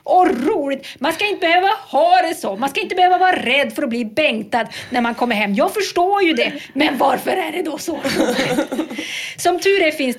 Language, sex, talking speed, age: English, female, 220 wpm, 30-49